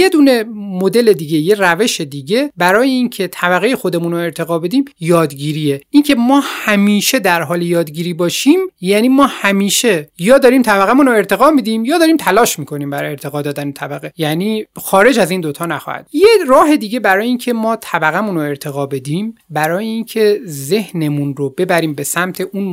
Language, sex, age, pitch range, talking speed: Persian, male, 30-49, 155-230 Hz, 170 wpm